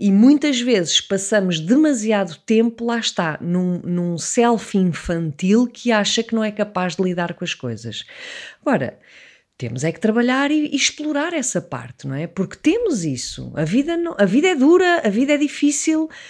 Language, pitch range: English, 190-280 Hz